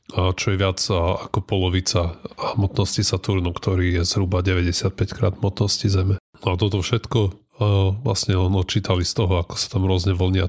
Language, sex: Slovak, male